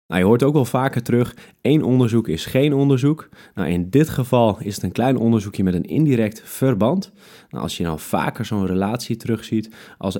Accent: Dutch